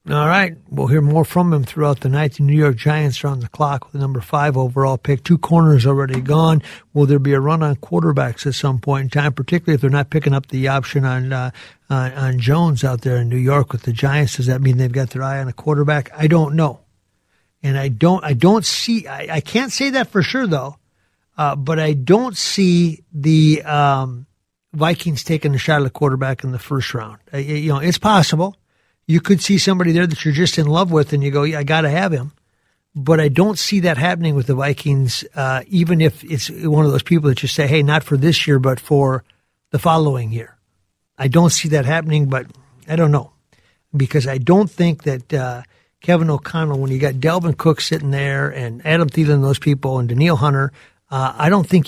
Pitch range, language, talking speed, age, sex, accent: 135-160 Hz, English, 225 wpm, 50-69, male, American